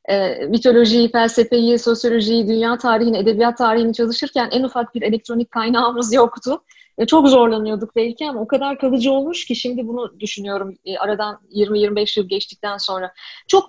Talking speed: 155 wpm